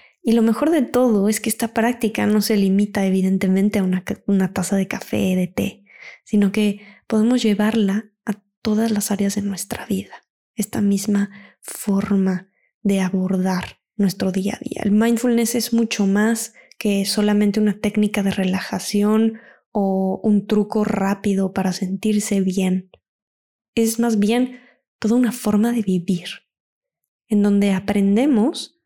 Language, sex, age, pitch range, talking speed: Spanish, female, 20-39, 195-230 Hz, 150 wpm